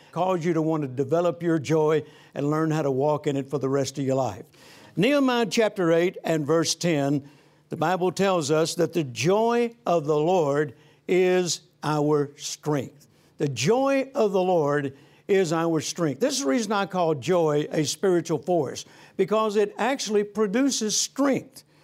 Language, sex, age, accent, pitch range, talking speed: English, male, 60-79, American, 150-190 Hz, 175 wpm